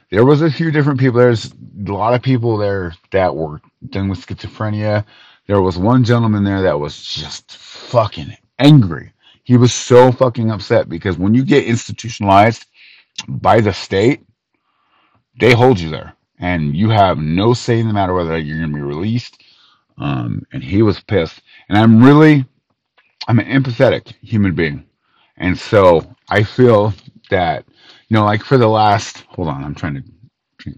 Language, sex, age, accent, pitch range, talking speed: English, male, 30-49, American, 90-125 Hz, 170 wpm